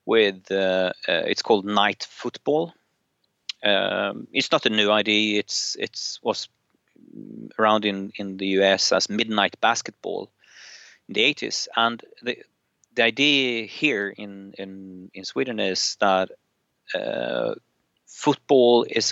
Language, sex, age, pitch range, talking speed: English, male, 30-49, 95-115 Hz, 130 wpm